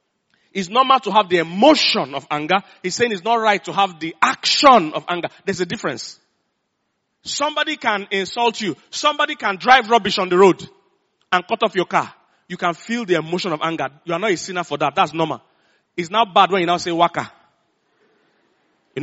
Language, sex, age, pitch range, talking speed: English, male, 40-59, 170-235 Hz, 200 wpm